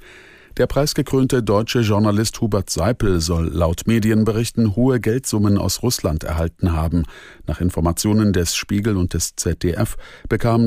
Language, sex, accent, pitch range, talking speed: German, male, German, 85-105 Hz, 130 wpm